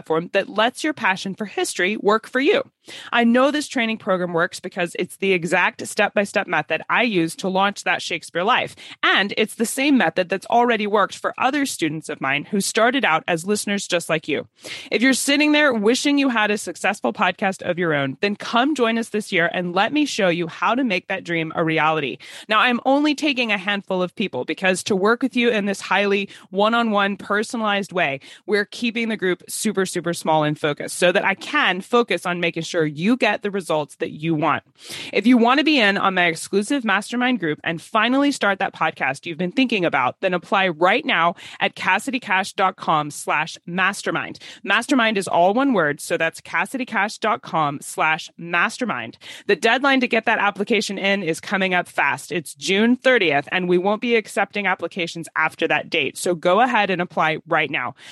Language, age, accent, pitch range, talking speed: English, 20-39, American, 175-230 Hz, 200 wpm